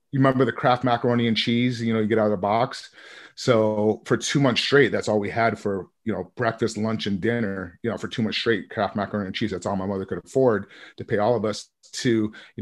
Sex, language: male, English